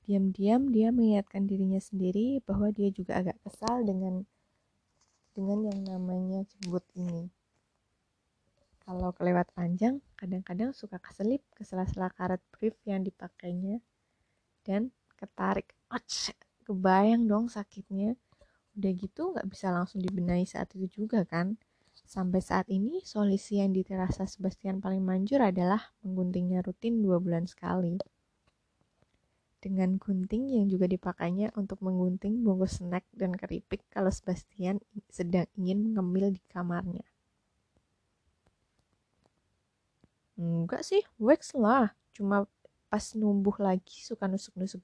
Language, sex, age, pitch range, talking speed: Indonesian, female, 20-39, 180-210 Hz, 115 wpm